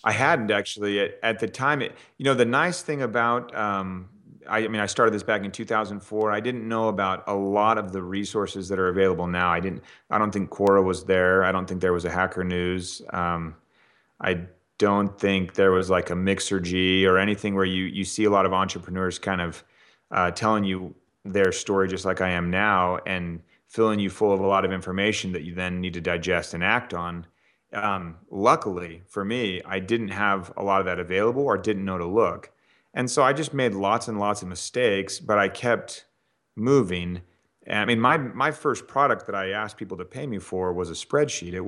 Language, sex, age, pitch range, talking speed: English, male, 30-49, 90-105 Hz, 220 wpm